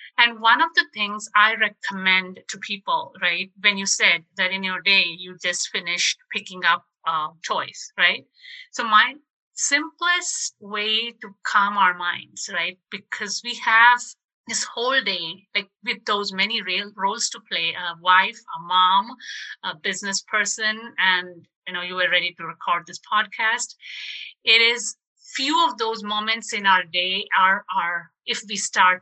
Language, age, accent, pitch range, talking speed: English, 50-69, Indian, 185-235 Hz, 160 wpm